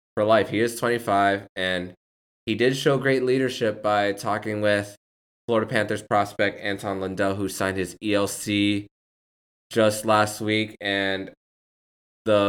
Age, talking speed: 20-39, 135 wpm